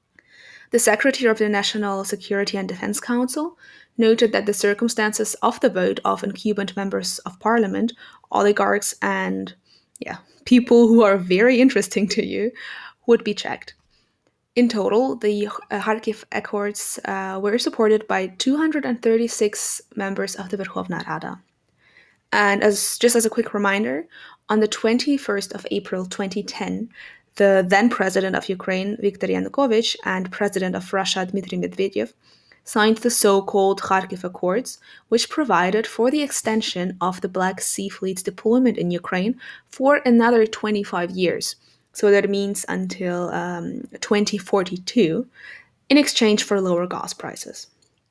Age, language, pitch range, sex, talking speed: 20-39, English, 195-230 Hz, female, 135 wpm